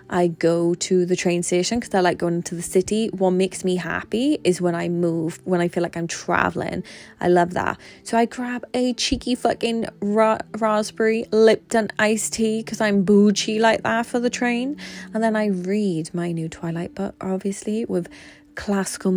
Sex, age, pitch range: female, 20-39, 175-220 Hz